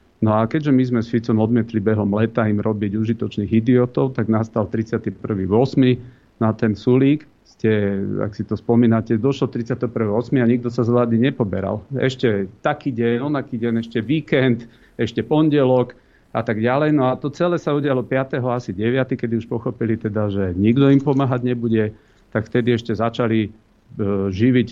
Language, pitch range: Slovak, 110-130 Hz